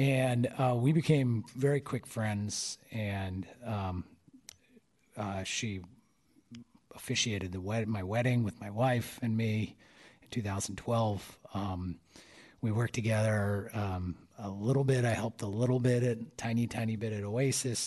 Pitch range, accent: 105-125 Hz, American